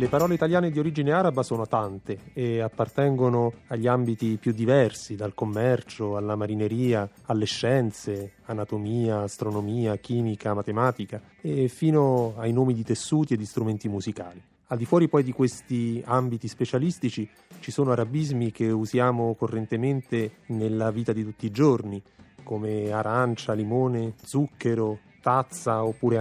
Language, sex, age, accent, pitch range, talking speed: Italian, male, 30-49, native, 110-135 Hz, 135 wpm